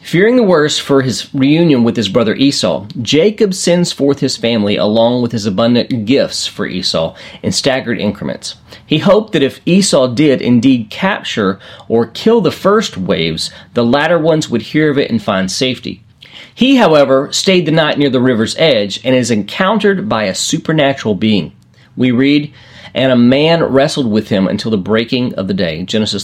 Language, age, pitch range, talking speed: English, 40-59, 115-160 Hz, 180 wpm